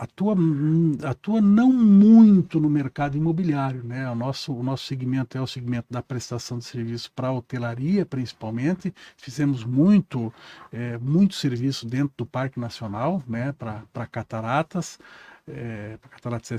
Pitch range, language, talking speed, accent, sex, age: 125-160 Hz, Portuguese, 135 wpm, Brazilian, male, 60-79